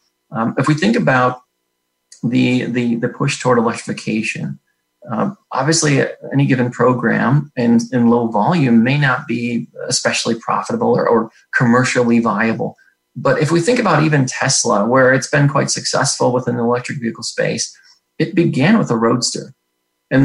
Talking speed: 155 wpm